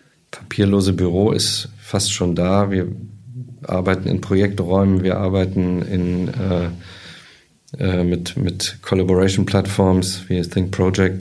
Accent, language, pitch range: German, German, 90-100 Hz